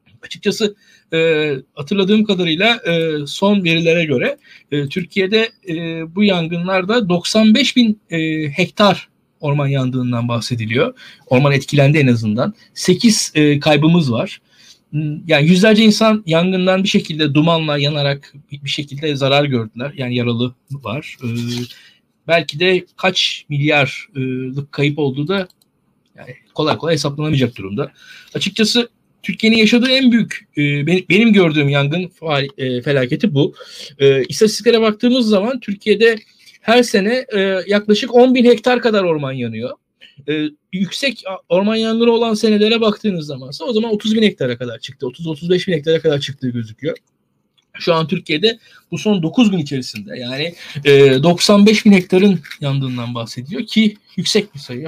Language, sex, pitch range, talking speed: Turkish, male, 140-205 Hz, 130 wpm